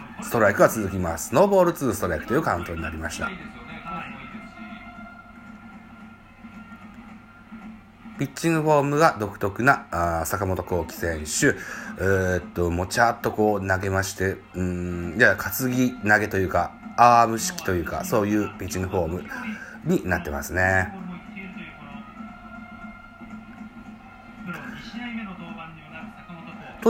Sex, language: male, Japanese